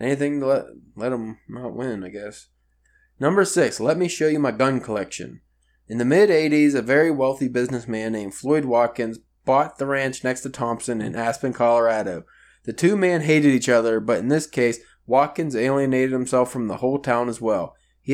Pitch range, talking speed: 120-145 Hz, 190 wpm